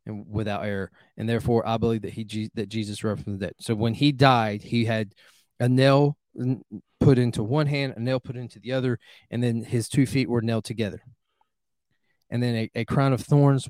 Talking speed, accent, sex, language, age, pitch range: 210 wpm, American, male, English, 20-39, 115-165 Hz